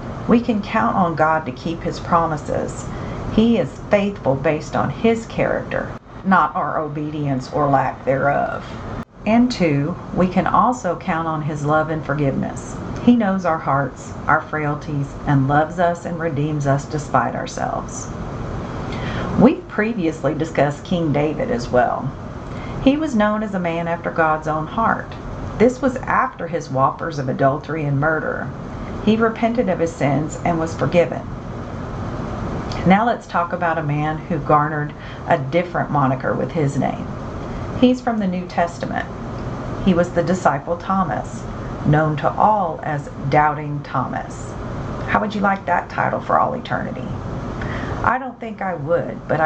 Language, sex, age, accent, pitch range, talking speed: English, female, 40-59, American, 140-175 Hz, 155 wpm